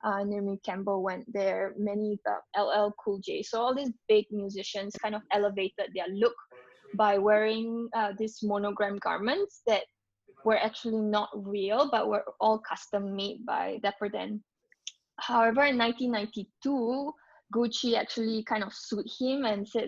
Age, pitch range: 20-39, 200-230 Hz